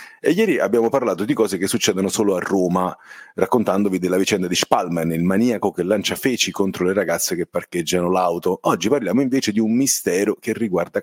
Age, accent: 40-59, native